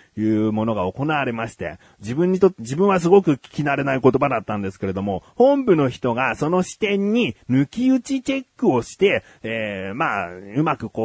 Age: 30-49